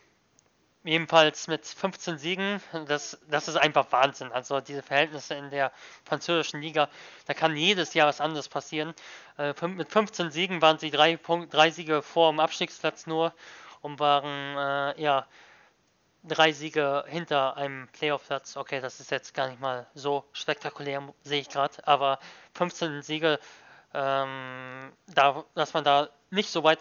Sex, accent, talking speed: male, German, 150 wpm